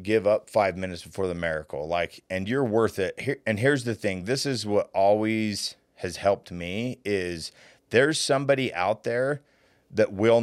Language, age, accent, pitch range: English, 30-49, American, 95-120 Hz